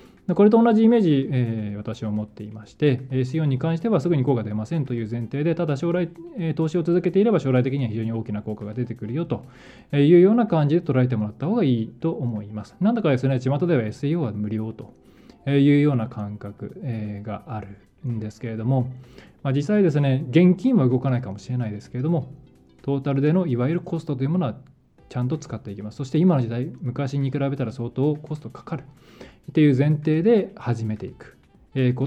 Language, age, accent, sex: Japanese, 20-39, native, male